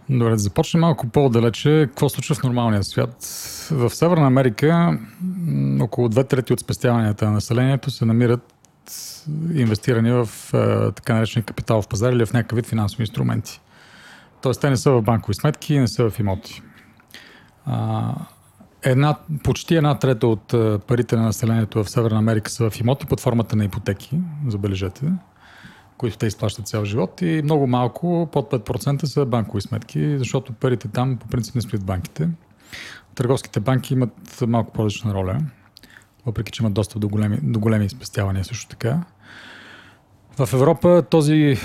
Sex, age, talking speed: male, 40-59, 150 wpm